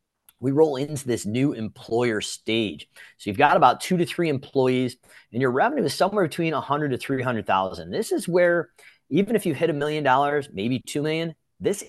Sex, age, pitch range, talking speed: male, 40-59, 115-155 Hz, 190 wpm